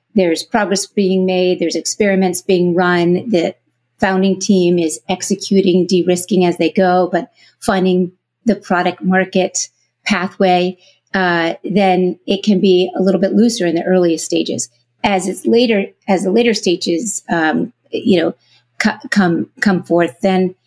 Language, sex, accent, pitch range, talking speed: English, female, American, 175-205 Hz, 150 wpm